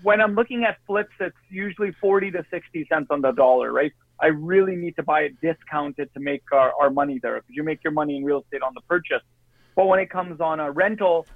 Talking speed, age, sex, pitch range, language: 240 wpm, 30-49, male, 150-185 Hz, English